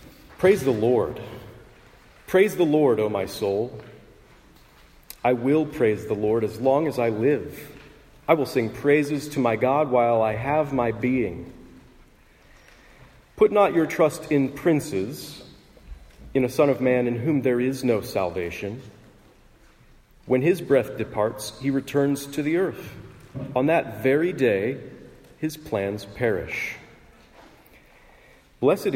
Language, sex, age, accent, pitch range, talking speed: English, male, 40-59, American, 115-150 Hz, 135 wpm